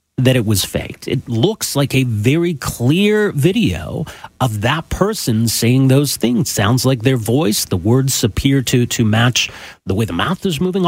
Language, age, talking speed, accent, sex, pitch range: English, 40-59, 180 wpm, American, male, 115-175 Hz